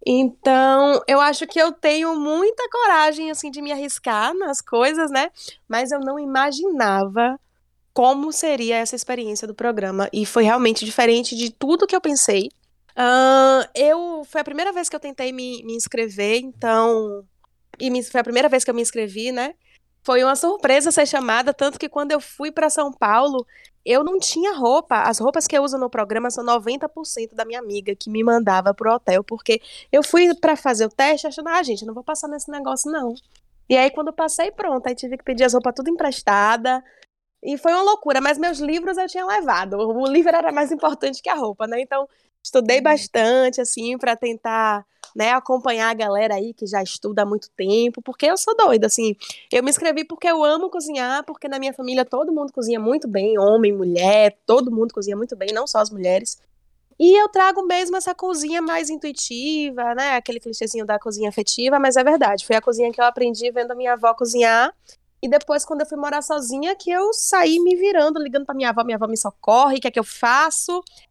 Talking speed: 205 wpm